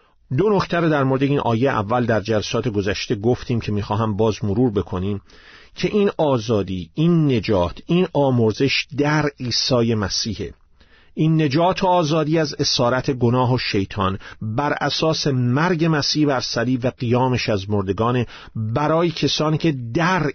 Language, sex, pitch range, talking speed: Persian, male, 110-155 Hz, 145 wpm